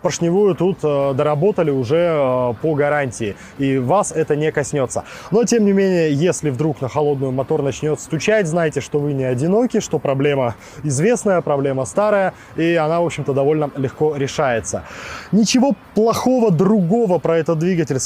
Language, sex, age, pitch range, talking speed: Russian, male, 20-39, 130-165 Hz, 150 wpm